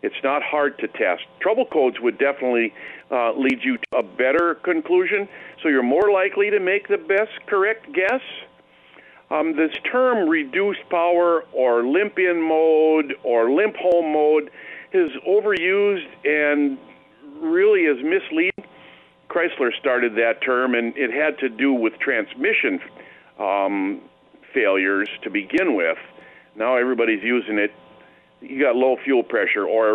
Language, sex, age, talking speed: English, male, 50-69, 140 wpm